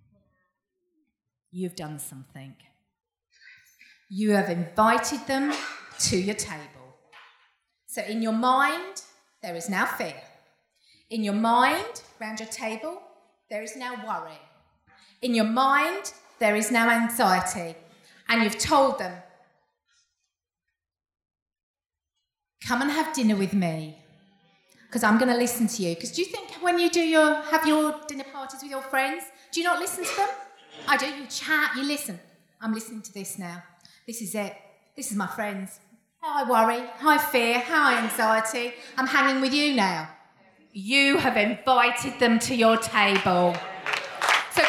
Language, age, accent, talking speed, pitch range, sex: English, 40-59, British, 150 wpm, 195-290 Hz, female